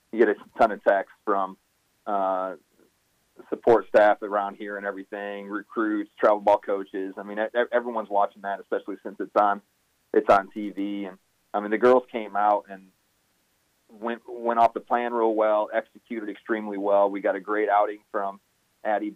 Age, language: 30-49, English